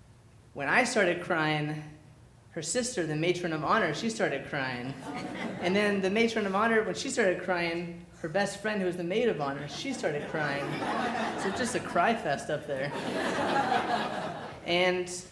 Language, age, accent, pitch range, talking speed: English, 30-49, American, 140-180 Hz, 170 wpm